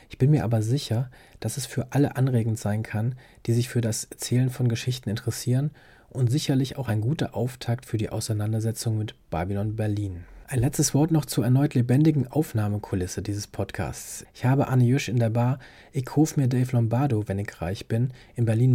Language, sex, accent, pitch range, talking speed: German, male, German, 115-135 Hz, 190 wpm